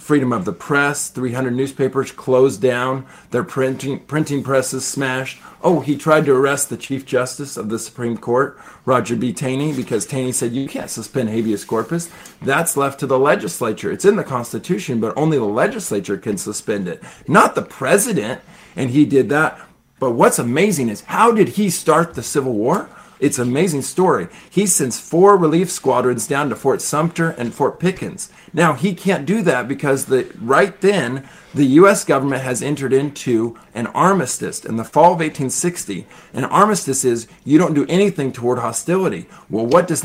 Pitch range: 130-170 Hz